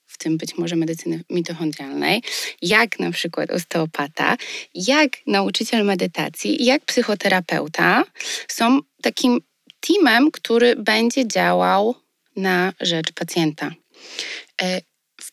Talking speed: 95 wpm